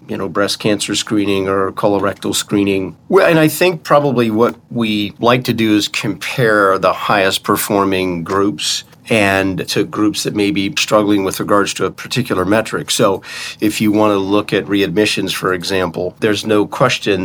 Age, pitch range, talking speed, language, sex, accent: 40-59, 100-115 Hz, 170 wpm, English, male, American